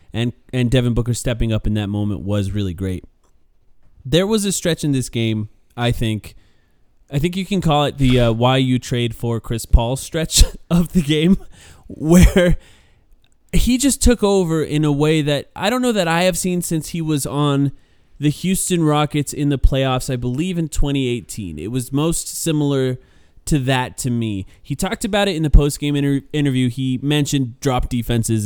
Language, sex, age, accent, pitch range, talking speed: English, male, 20-39, American, 110-145 Hz, 190 wpm